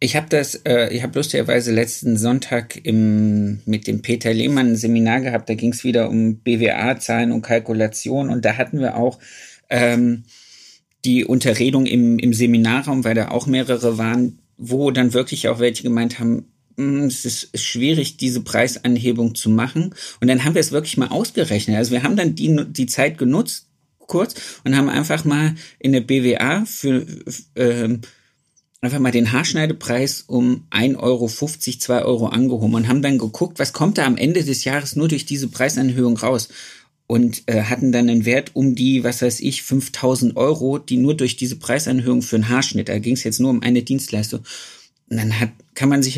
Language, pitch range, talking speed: German, 115-135 Hz, 185 wpm